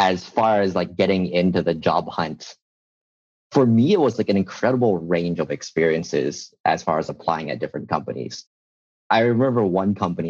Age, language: 30-49, English